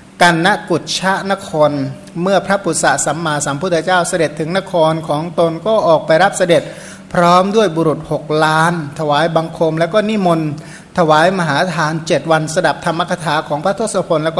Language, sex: Thai, male